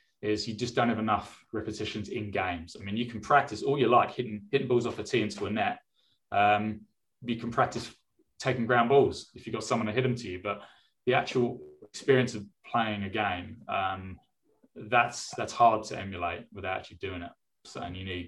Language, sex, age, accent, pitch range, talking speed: English, male, 20-39, British, 100-120 Hz, 210 wpm